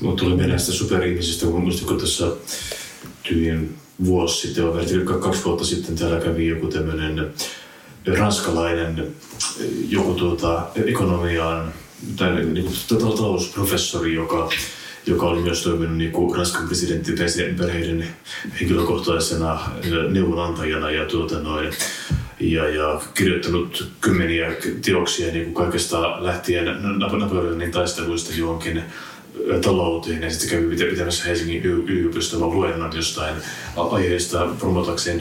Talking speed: 105 wpm